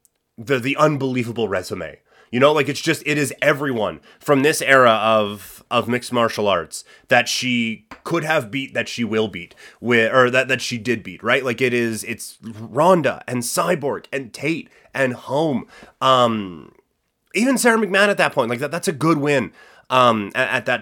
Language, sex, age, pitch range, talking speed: English, male, 30-49, 115-145 Hz, 180 wpm